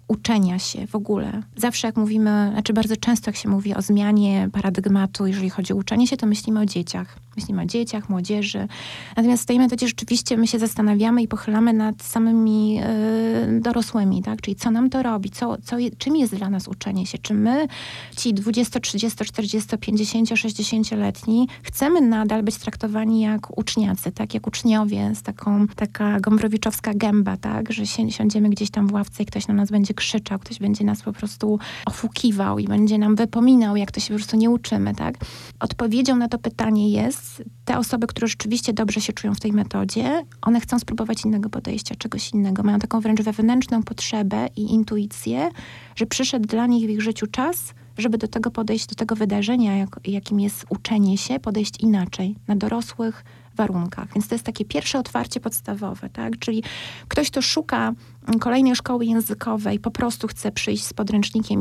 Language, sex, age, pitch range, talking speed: Polish, female, 20-39, 205-230 Hz, 180 wpm